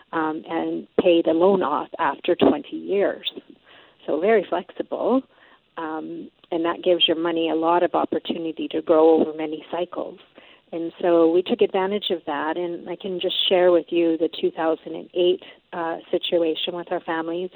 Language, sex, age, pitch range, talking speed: English, female, 40-59, 160-185 Hz, 165 wpm